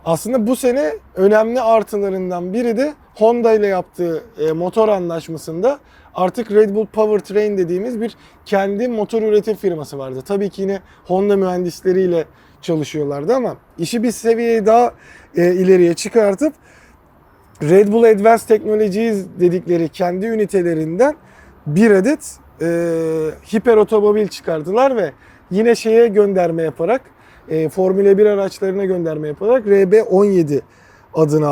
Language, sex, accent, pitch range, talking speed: Turkish, male, native, 175-220 Hz, 115 wpm